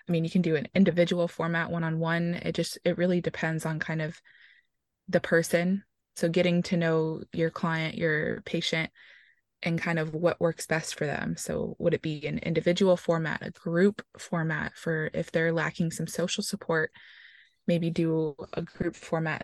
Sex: female